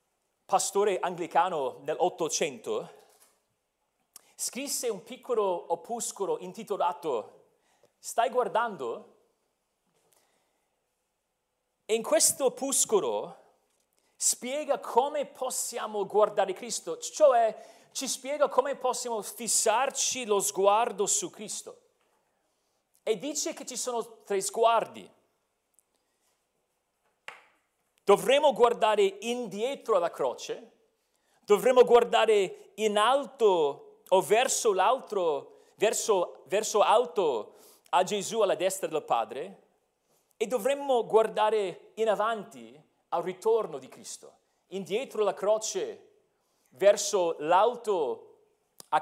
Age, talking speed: 40-59, 85 wpm